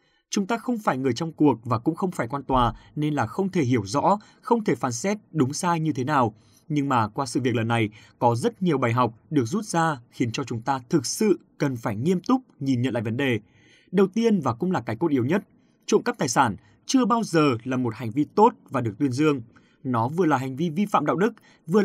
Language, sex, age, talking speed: Vietnamese, male, 20-39, 255 wpm